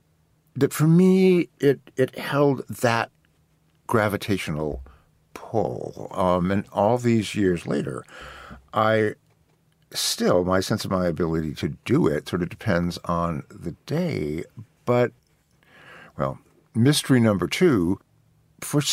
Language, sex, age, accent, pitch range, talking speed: English, male, 50-69, American, 95-150 Hz, 115 wpm